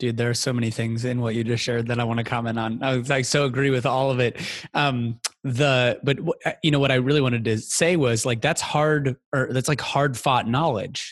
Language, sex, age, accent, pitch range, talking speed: English, male, 20-39, American, 115-145 Hz, 255 wpm